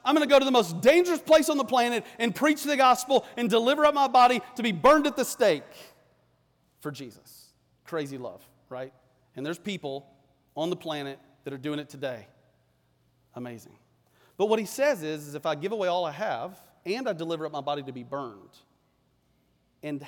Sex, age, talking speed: male, 40-59, 200 wpm